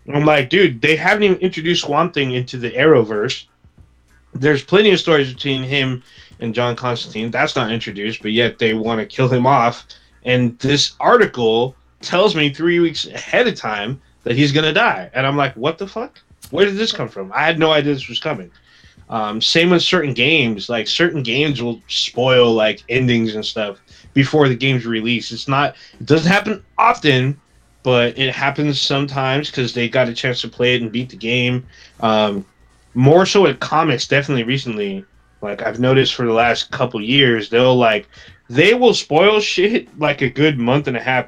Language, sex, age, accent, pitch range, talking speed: English, male, 20-39, American, 115-155 Hz, 190 wpm